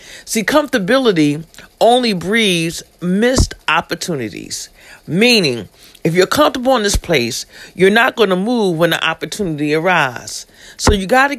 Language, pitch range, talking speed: English, 165-225 Hz, 135 wpm